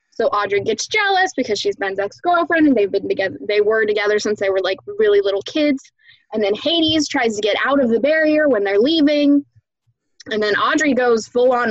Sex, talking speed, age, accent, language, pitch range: female, 210 wpm, 10-29, American, English, 205-260 Hz